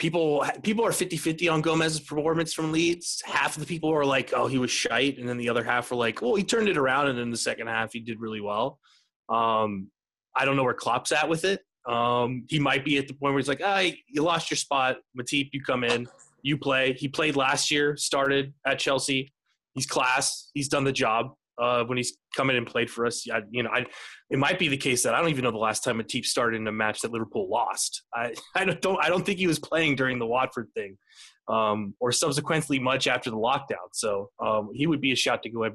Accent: American